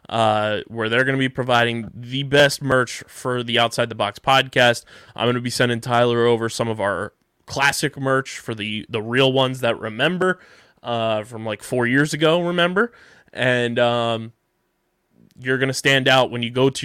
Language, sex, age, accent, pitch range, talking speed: English, male, 20-39, American, 120-140 Hz, 190 wpm